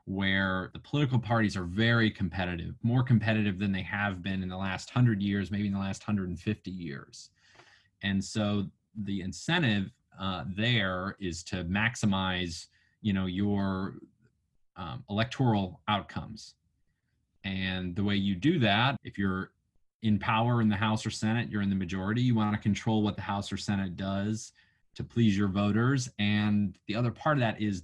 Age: 20-39